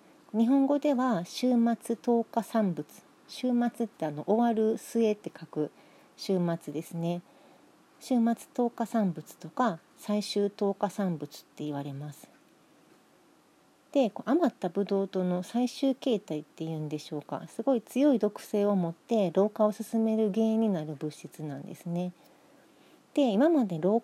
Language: Japanese